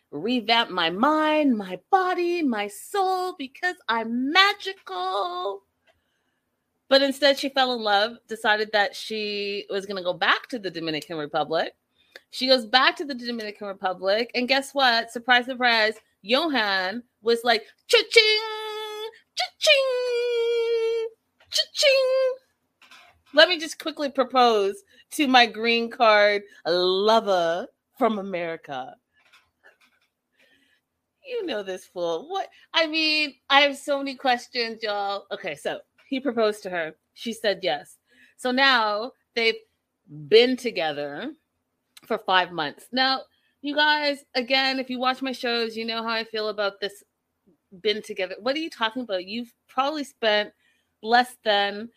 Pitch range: 200-280 Hz